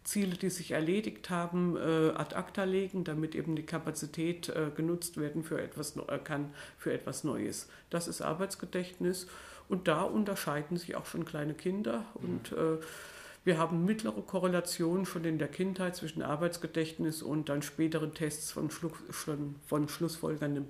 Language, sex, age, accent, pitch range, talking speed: German, female, 50-69, German, 160-190 Hz, 145 wpm